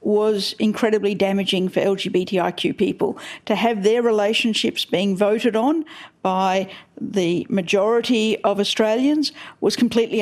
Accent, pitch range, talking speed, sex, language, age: Australian, 205-230 Hz, 115 wpm, female, English, 50-69